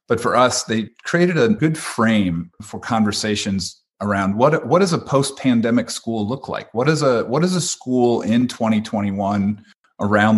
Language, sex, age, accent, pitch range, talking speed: English, male, 40-59, American, 105-150 Hz, 170 wpm